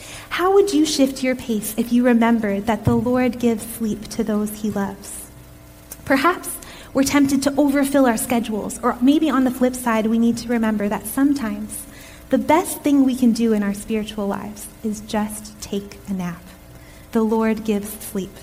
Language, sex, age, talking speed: English, female, 20-39, 180 wpm